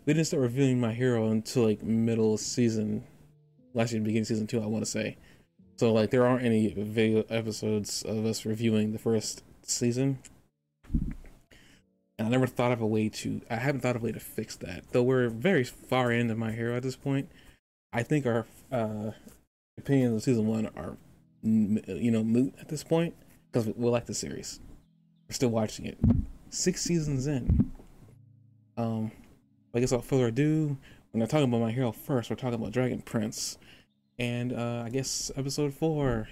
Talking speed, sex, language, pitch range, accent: 180 wpm, male, English, 110-135 Hz, American